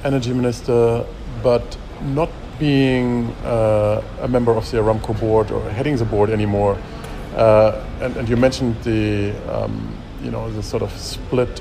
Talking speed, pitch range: 155 wpm, 105-125 Hz